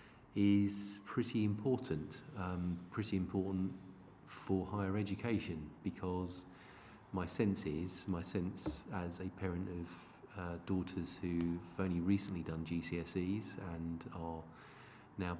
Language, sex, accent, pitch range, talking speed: English, male, British, 90-100 Hz, 115 wpm